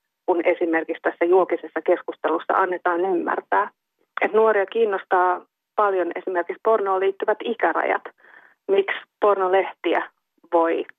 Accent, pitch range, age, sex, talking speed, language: native, 180-230 Hz, 30-49, female, 100 wpm, Finnish